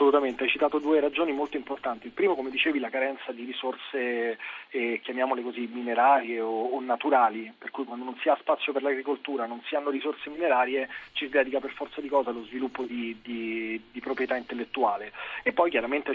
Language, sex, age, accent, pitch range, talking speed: Italian, male, 30-49, native, 125-145 Hz, 195 wpm